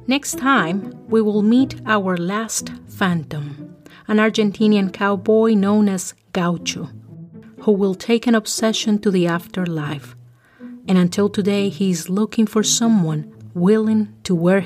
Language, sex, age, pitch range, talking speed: English, female, 30-49, 165-215 Hz, 135 wpm